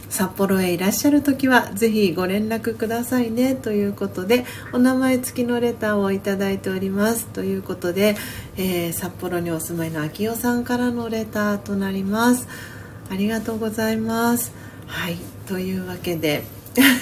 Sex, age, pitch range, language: female, 40-59, 175-235 Hz, Japanese